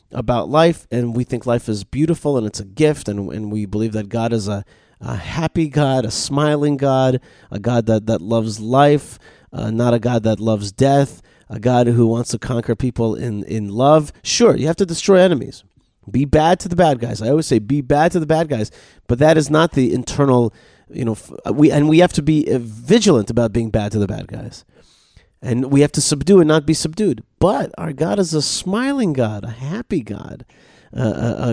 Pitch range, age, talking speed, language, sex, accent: 115-150 Hz, 30-49, 215 wpm, English, male, American